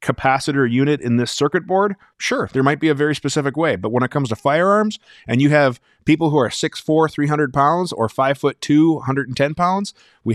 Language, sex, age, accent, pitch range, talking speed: English, male, 20-39, American, 120-150 Hz, 195 wpm